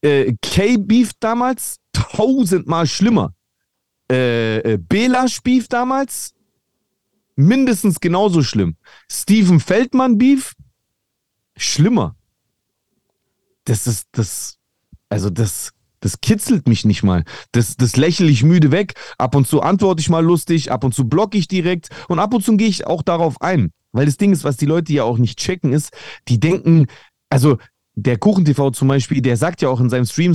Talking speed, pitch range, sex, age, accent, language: 160 wpm, 130-195 Hz, male, 40-59, German, German